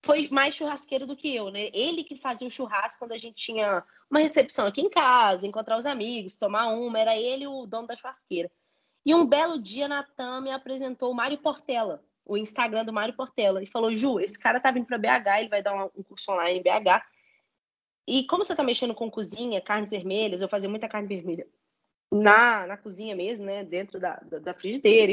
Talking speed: 210 wpm